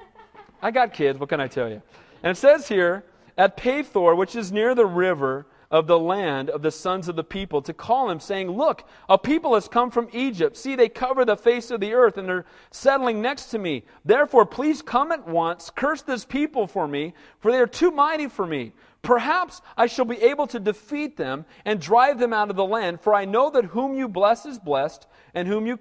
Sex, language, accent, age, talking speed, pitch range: male, English, American, 40-59, 225 wpm, 190-260 Hz